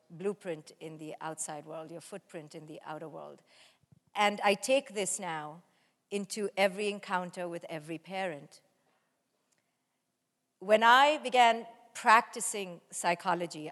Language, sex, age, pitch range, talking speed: English, female, 50-69, 175-210 Hz, 120 wpm